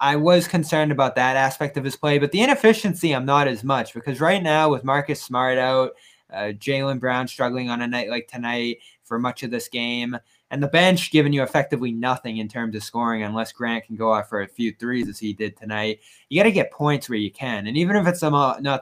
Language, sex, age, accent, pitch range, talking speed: English, male, 20-39, American, 120-145 Hz, 240 wpm